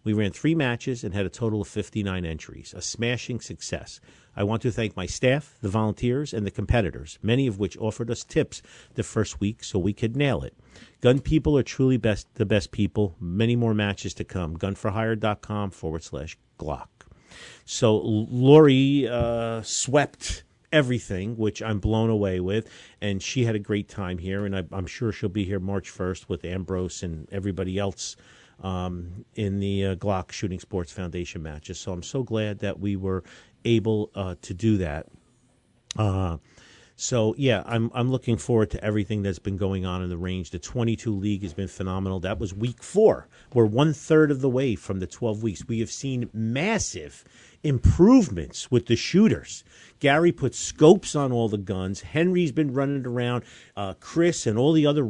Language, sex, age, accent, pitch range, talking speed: English, male, 50-69, American, 95-125 Hz, 180 wpm